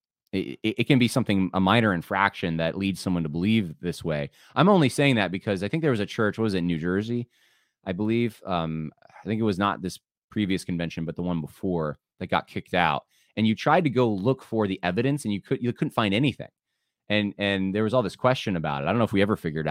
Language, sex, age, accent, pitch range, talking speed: English, male, 20-39, American, 90-120 Hz, 255 wpm